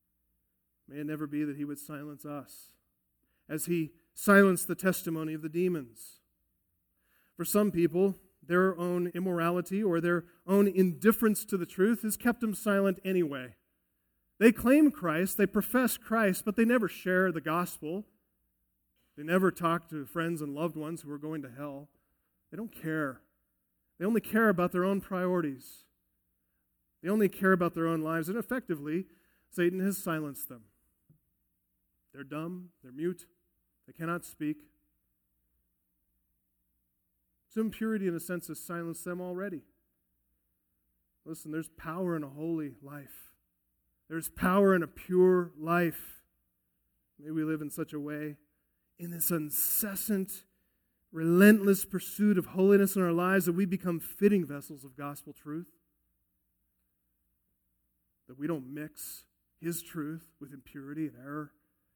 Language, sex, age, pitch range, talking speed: English, male, 40-59, 125-185 Hz, 140 wpm